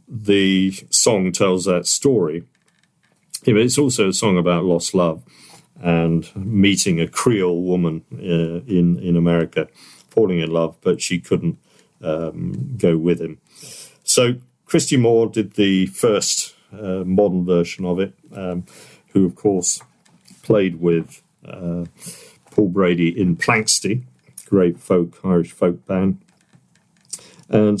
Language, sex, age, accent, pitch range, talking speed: English, male, 50-69, British, 85-115 Hz, 125 wpm